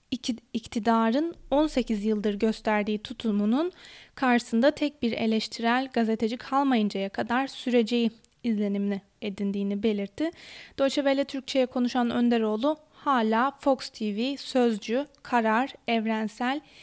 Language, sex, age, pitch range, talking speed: Turkish, female, 20-39, 220-260 Hz, 95 wpm